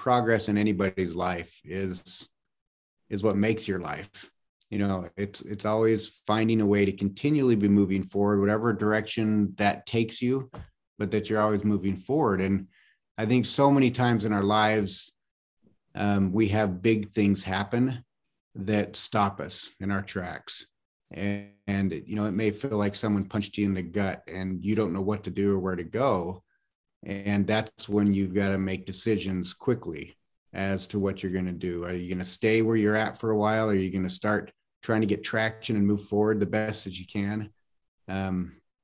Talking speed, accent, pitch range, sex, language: 195 wpm, American, 95-110 Hz, male, English